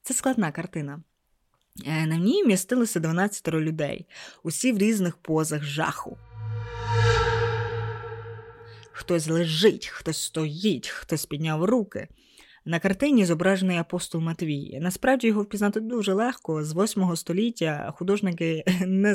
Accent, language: native, Ukrainian